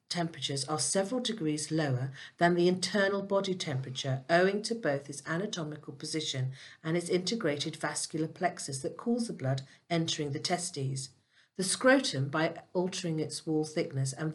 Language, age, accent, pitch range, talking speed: English, 50-69, British, 140-180 Hz, 150 wpm